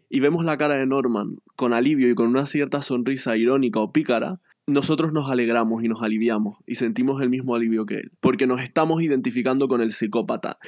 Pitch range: 120-160 Hz